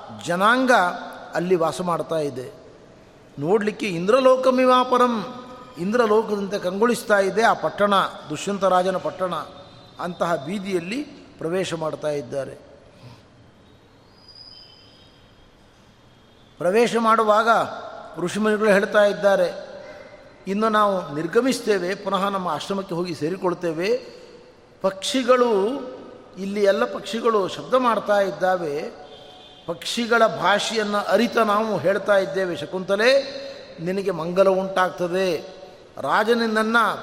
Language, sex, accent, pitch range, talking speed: Kannada, male, native, 175-230 Hz, 80 wpm